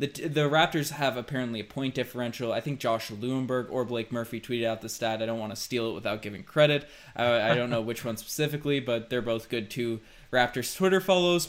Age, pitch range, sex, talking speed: 20-39, 115-145 Hz, male, 225 wpm